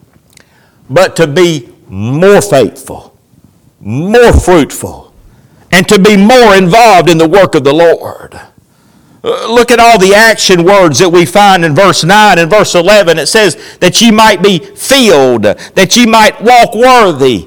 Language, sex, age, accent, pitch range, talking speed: English, male, 60-79, American, 185-255 Hz, 155 wpm